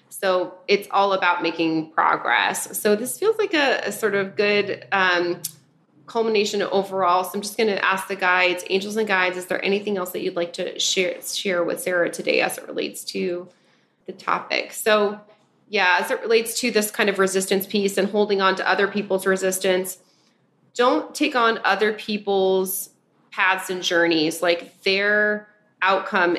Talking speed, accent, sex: 175 wpm, American, female